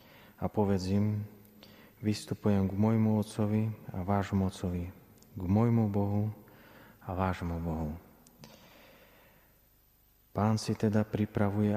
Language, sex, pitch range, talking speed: Slovak, male, 90-105 Hz, 95 wpm